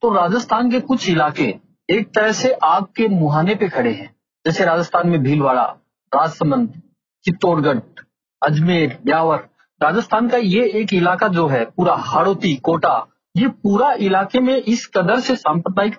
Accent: native